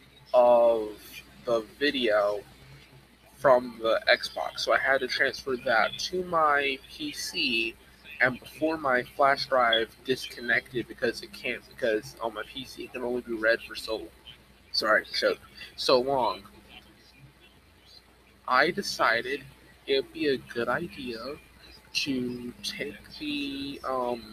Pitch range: 115-145 Hz